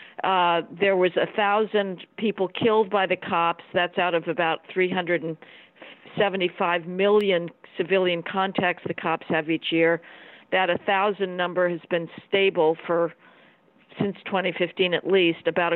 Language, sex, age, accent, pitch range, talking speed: English, female, 50-69, American, 170-205 Hz, 155 wpm